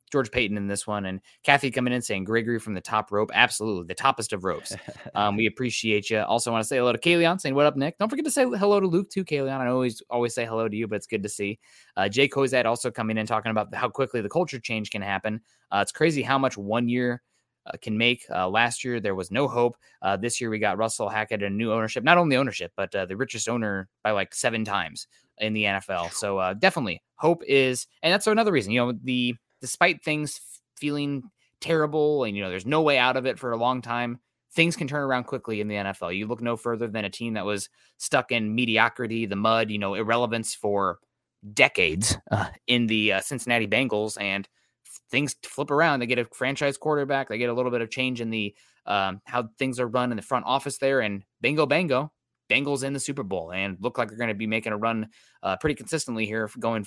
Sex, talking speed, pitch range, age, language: male, 240 wpm, 110-135 Hz, 20-39, English